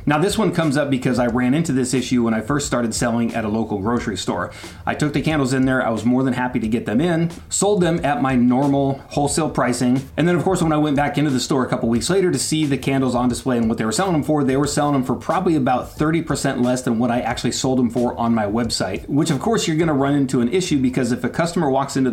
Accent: American